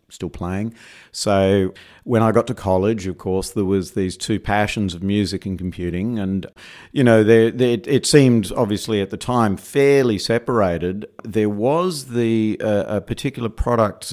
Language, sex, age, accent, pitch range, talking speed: English, male, 50-69, Australian, 95-110 Hz, 165 wpm